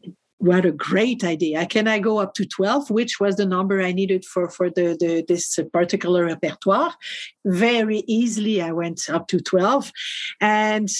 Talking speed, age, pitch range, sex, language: 170 wpm, 50-69, 180-215 Hz, female, English